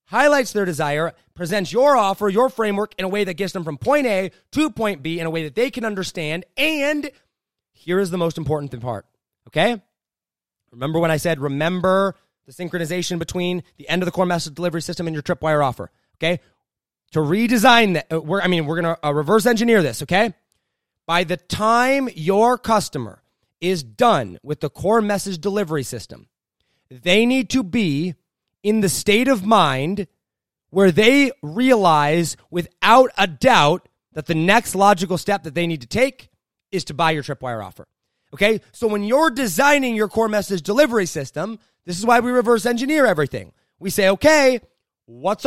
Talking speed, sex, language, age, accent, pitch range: 175 wpm, male, English, 30-49, American, 160-235 Hz